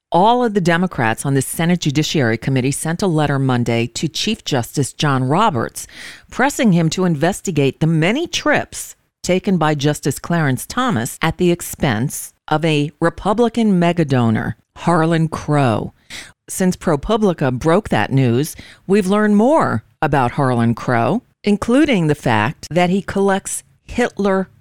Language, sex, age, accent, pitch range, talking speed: English, female, 40-59, American, 140-190 Hz, 140 wpm